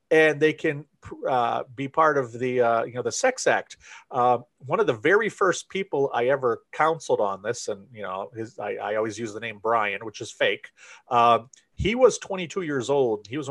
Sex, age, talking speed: male, 40-59, 215 wpm